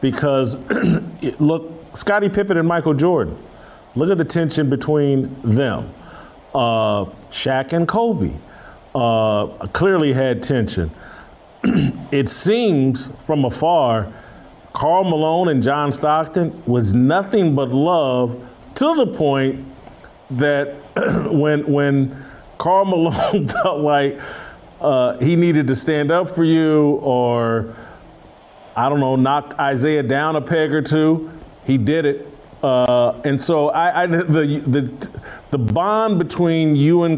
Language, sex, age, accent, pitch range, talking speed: English, male, 40-59, American, 130-160 Hz, 125 wpm